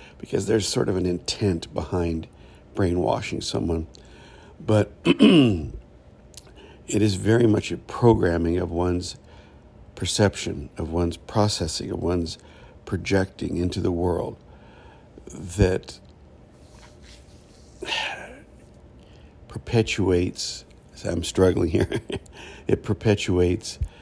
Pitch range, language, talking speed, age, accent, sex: 85-100 Hz, English, 85 wpm, 60-79, American, male